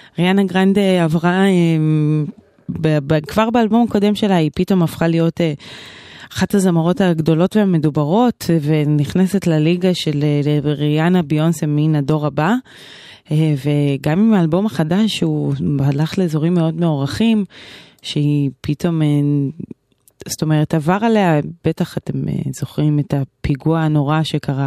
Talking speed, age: 110 wpm, 20-39